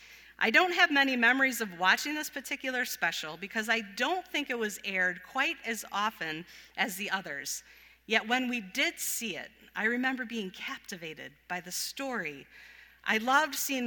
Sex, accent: female, American